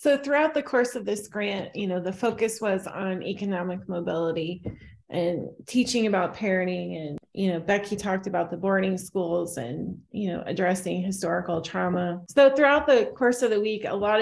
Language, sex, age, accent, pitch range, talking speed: English, female, 30-49, American, 180-210 Hz, 180 wpm